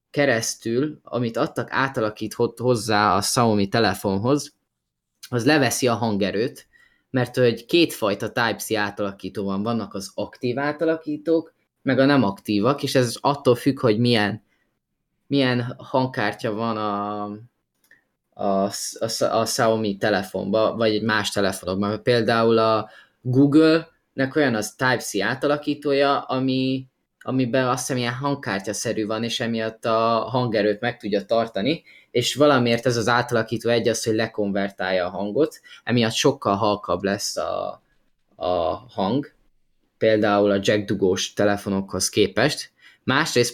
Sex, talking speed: male, 125 wpm